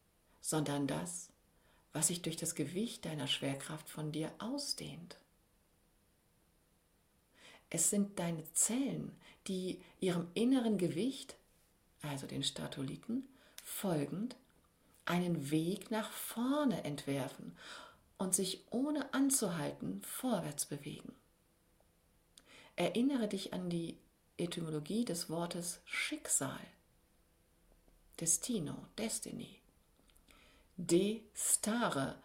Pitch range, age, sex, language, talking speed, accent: 150-215 Hz, 50-69, female, German, 85 wpm, German